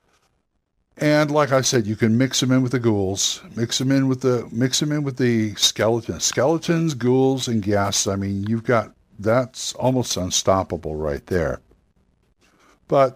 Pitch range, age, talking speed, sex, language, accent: 110-145 Hz, 60-79, 170 wpm, male, English, American